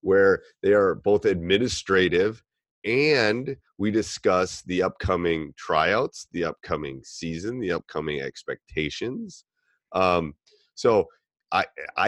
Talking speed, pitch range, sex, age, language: 100 wpm, 90-120 Hz, male, 30-49, English